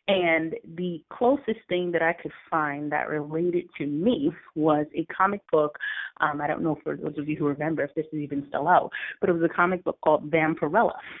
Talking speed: 215 wpm